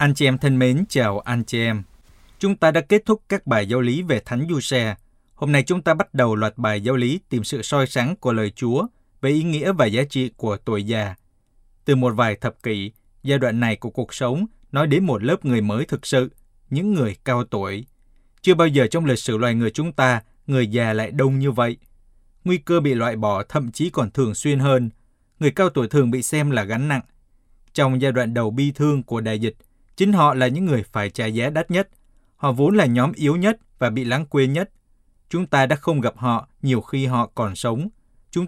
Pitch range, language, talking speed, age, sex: 115-145 Hz, Vietnamese, 230 wpm, 20-39, male